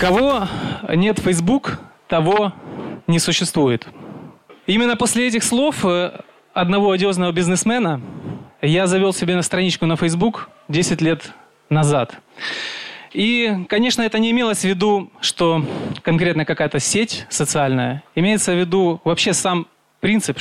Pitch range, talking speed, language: 160-200 Hz, 120 wpm, Ukrainian